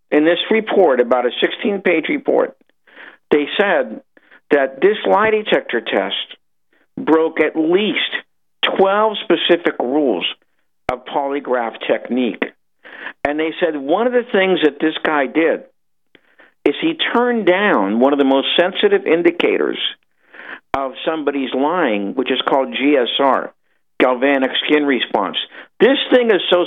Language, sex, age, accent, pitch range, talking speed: English, male, 60-79, American, 140-220 Hz, 130 wpm